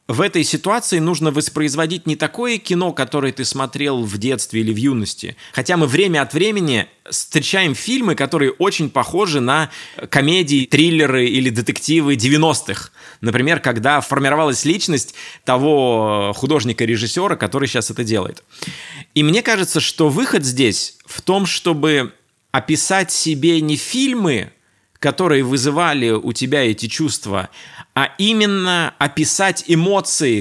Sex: male